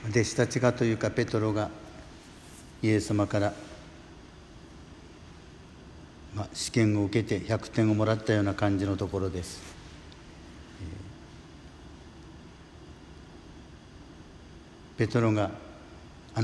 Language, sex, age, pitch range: Japanese, male, 60-79, 80-115 Hz